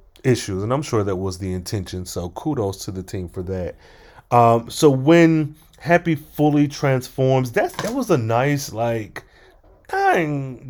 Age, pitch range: 30-49, 105-130 Hz